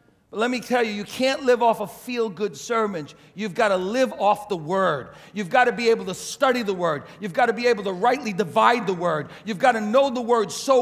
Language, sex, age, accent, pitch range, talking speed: English, male, 40-59, American, 175-245 Hz, 245 wpm